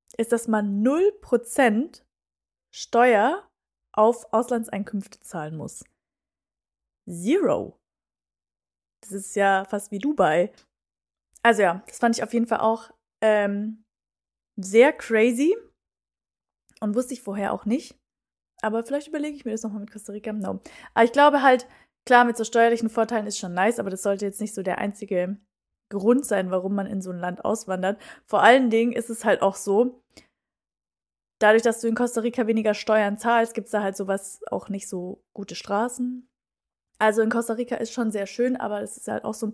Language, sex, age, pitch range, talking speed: German, female, 20-39, 195-235 Hz, 175 wpm